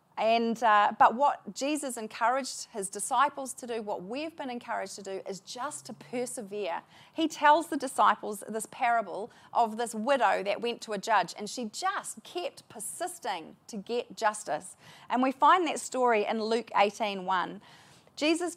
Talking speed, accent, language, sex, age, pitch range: 165 wpm, Australian, English, female, 30-49, 210-270 Hz